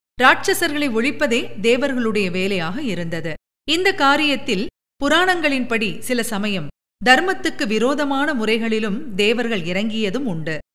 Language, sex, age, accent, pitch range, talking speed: Tamil, female, 50-69, native, 195-280 Hz, 90 wpm